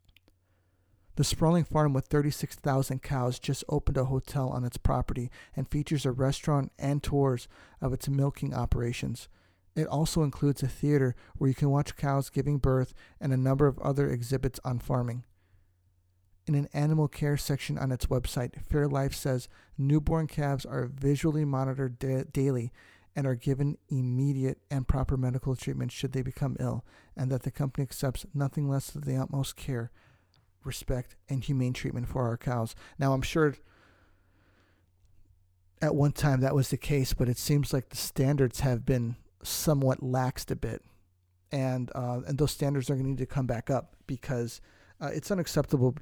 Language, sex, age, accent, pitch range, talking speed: English, male, 50-69, American, 115-140 Hz, 170 wpm